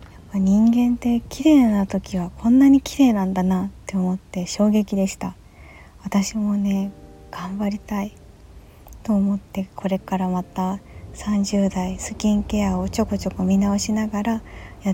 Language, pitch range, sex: Japanese, 190-220 Hz, female